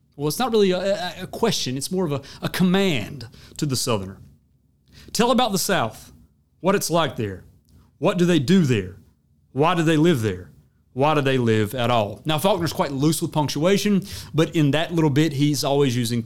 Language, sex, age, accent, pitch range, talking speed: English, male, 30-49, American, 115-175 Hz, 200 wpm